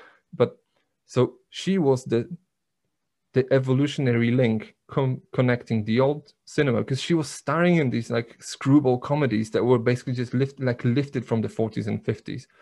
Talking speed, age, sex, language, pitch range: 160 wpm, 30-49, male, English, 110-135 Hz